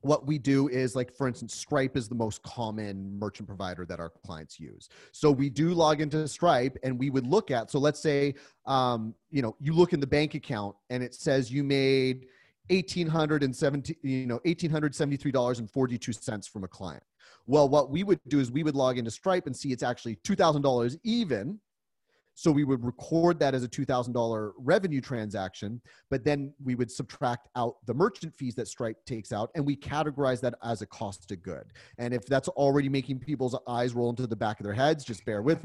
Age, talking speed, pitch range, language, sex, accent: 30-49, 195 wpm, 120-155 Hz, English, male, American